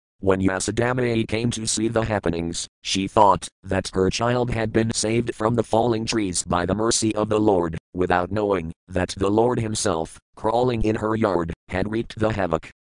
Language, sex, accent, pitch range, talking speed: English, male, American, 100-120 Hz, 180 wpm